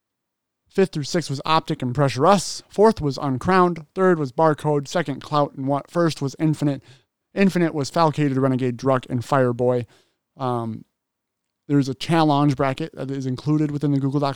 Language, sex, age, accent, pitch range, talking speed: English, male, 30-49, American, 130-165 Hz, 165 wpm